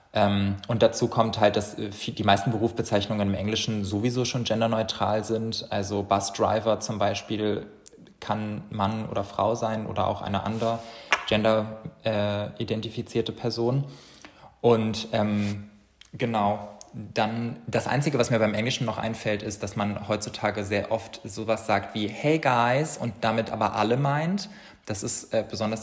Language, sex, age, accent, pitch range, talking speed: German, male, 20-39, German, 105-115 Hz, 150 wpm